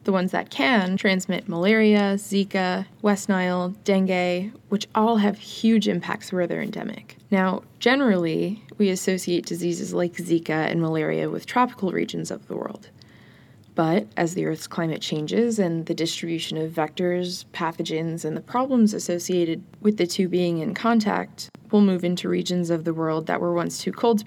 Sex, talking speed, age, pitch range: female, 170 wpm, 20-39, 170-210 Hz